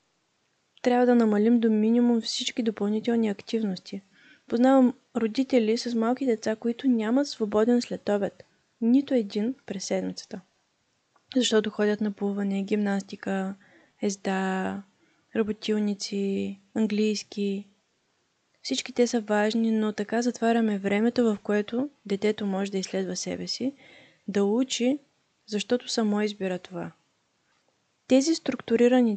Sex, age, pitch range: female, 20-39, 205-245 Hz